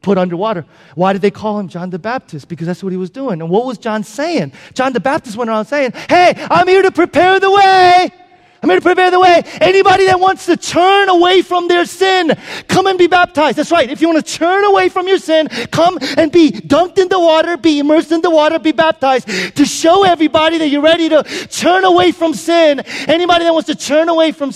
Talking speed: 230 wpm